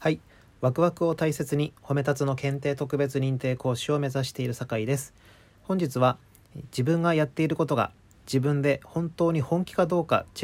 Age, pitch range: 40-59, 120-150 Hz